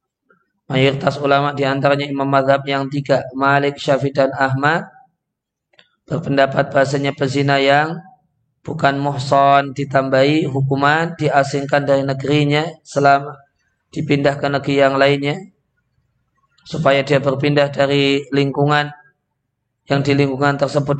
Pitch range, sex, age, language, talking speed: 135-145 Hz, male, 20-39, Indonesian, 105 wpm